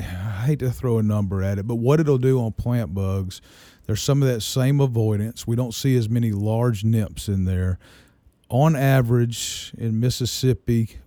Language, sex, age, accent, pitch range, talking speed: English, male, 40-59, American, 100-120 Hz, 185 wpm